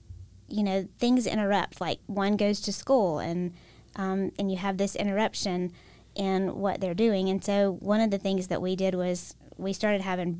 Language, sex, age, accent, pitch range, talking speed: English, female, 20-39, American, 180-210 Hz, 190 wpm